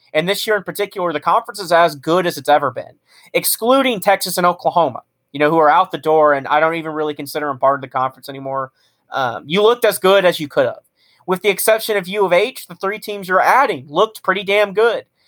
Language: English